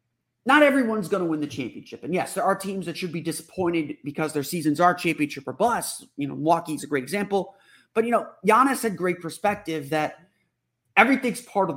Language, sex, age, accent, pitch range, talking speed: English, male, 30-49, American, 150-215 Hz, 195 wpm